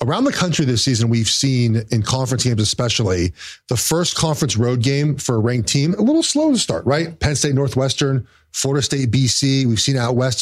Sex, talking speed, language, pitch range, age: male, 205 wpm, English, 125-170 Hz, 40-59